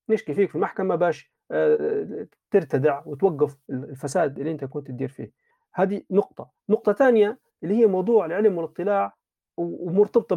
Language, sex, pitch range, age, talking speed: Arabic, male, 160-220 Hz, 40-59, 135 wpm